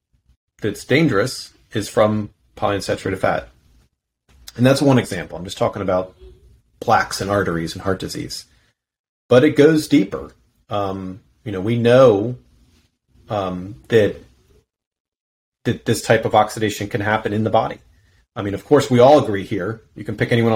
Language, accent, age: English, American, 30-49